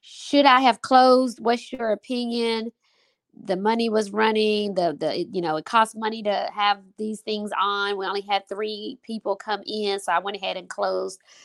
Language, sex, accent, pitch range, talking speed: English, female, American, 180-235 Hz, 190 wpm